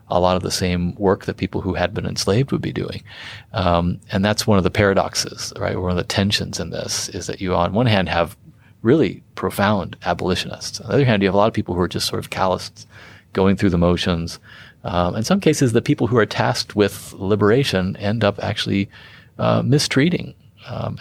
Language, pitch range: English, 90-105 Hz